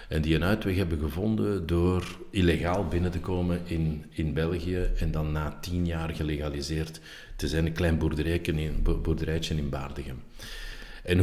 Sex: male